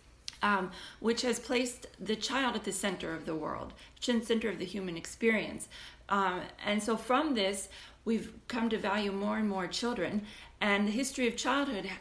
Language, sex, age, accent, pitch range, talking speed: English, female, 30-49, American, 190-240 Hz, 180 wpm